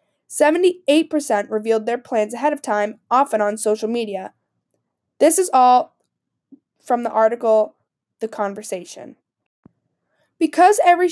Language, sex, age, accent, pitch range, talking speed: English, female, 10-29, American, 225-275 Hz, 110 wpm